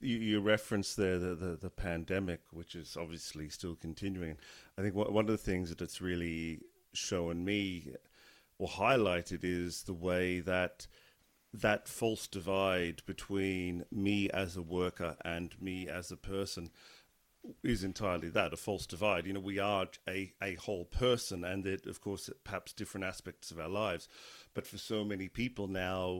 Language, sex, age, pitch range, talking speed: English, male, 40-59, 90-105 Hz, 165 wpm